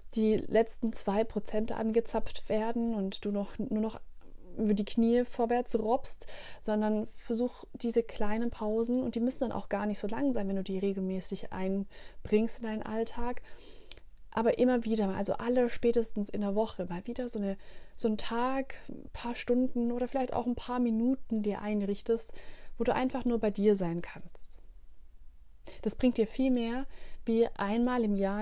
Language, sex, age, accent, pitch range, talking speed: German, female, 30-49, German, 200-235 Hz, 170 wpm